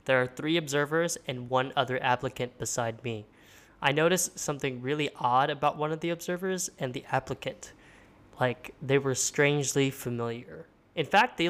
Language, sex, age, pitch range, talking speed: English, male, 10-29, 125-155 Hz, 160 wpm